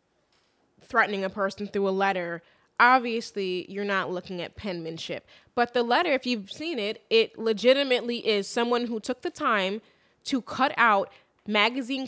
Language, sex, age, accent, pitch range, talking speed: English, female, 20-39, American, 190-245 Hz, 155 wpm